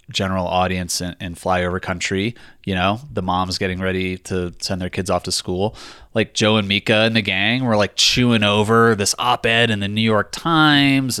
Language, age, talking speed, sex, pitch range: English, 20-39, 200 wpm, male, 90-110 Hz